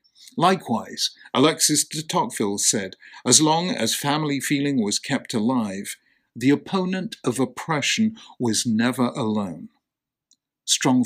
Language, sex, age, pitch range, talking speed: English, male, 50-69, 125-165 Hz, 115 wpm